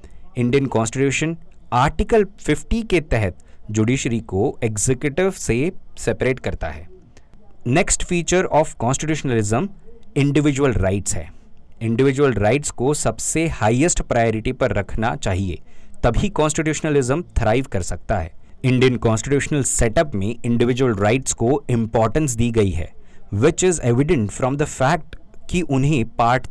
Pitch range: 105-140 Hz